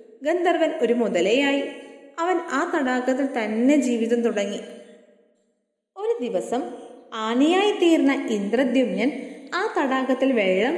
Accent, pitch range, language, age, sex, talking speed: native, 235-305 Hz, Malayalam, 20-39, female, 95 wpm